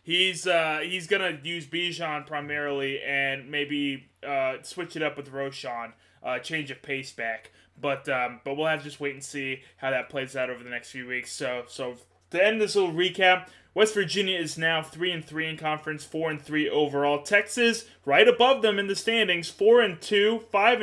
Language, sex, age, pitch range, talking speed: English, male, 20-39, 140-185 Hz, 200 wpm